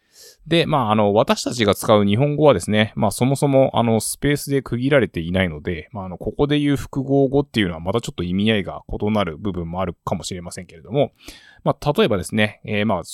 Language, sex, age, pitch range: Japanese, male, 20-39, 95-135 Hz